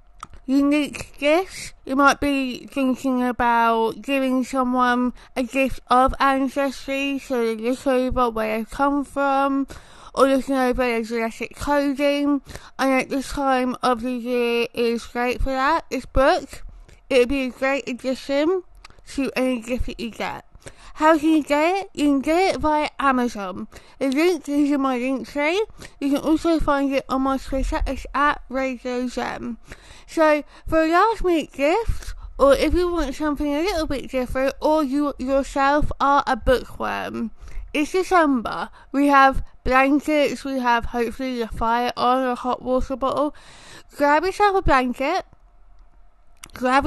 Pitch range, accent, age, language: 245-290 Hz, British, 20-39, English